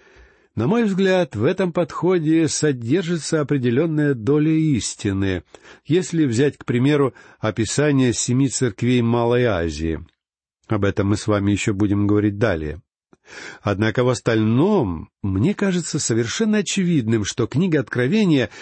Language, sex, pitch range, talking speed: Russian, male, 105-165 Hz, 120 wpm